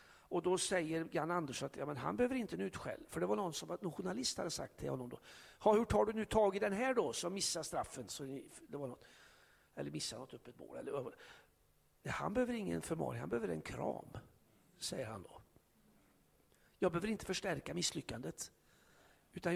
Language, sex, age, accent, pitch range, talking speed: Swedish, male, 60-79, native, 155-220 Hz, 200 wpm